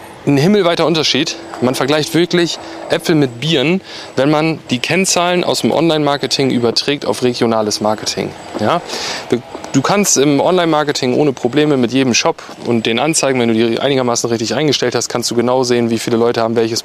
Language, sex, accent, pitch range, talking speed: German, male, German, 125-165 Hz, 170 wpm